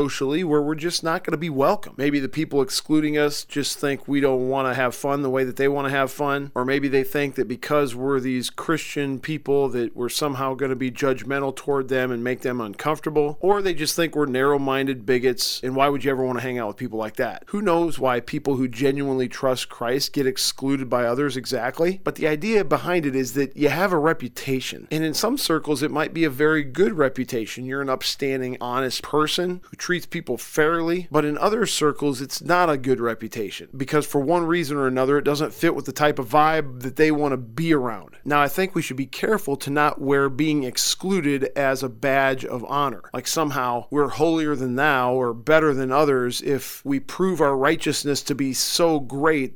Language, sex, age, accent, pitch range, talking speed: English, male, 40-59, American, 130-155 Hz, 220 wpm